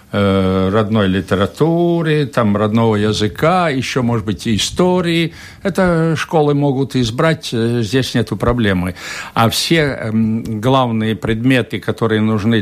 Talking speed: 115 wpm